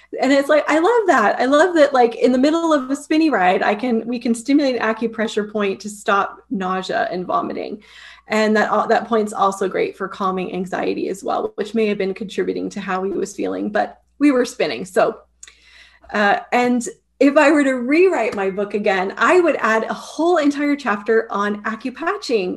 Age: 30-49